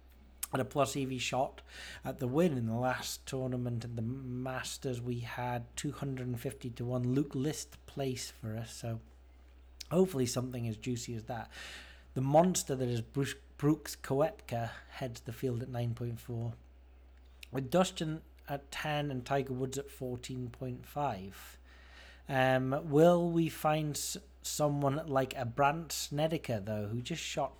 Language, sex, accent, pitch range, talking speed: English, male, British, 115-140 Hz, 145 wpm